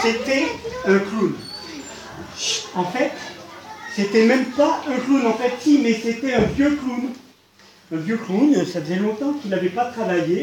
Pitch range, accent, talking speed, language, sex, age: 200-280 Hz, French, 160 wpm, French, male, 40-59